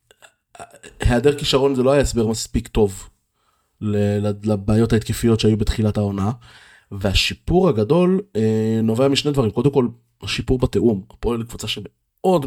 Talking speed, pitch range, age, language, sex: 120 wpm, 105-115 Hz, 20-39, Hebrew, male